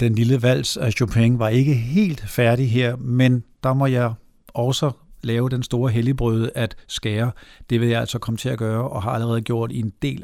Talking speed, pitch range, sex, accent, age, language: 210 wpm, 115-155 Hz, male, native, 60-79, Danish